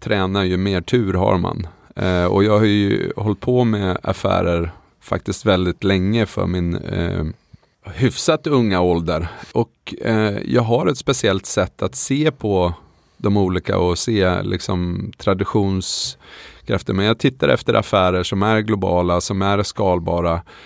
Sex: male